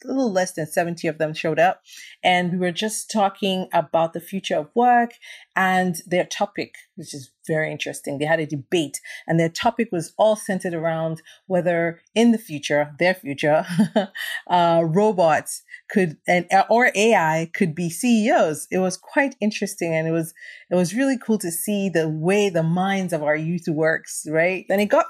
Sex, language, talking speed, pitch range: female, English, 185 wpm, 165-215 Hz